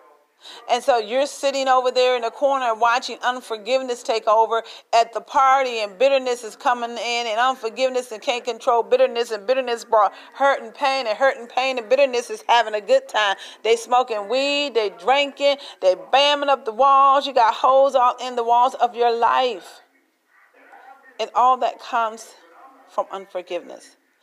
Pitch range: 215-260 Hz